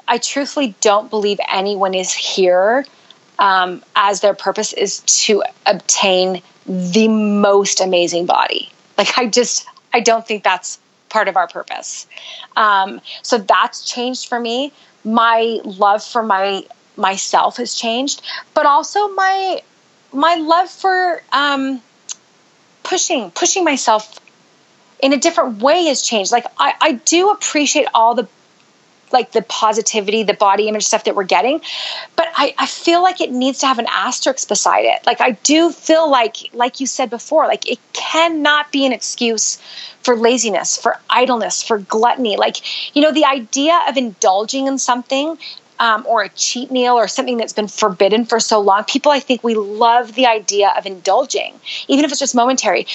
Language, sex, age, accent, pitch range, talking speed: English, female, 30-49, American, 210-290 Hz, 165 wpm